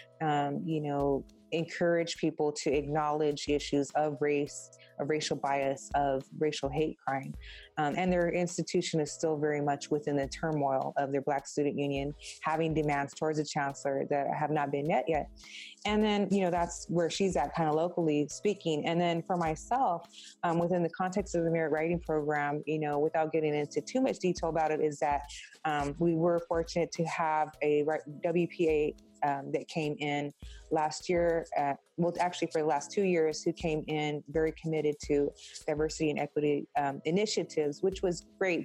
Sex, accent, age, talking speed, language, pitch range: female, American, 20-39, 185 wpm, English, 145-170 Hz